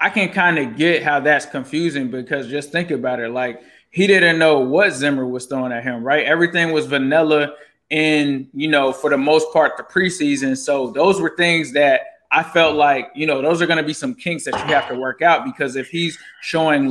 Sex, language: male, English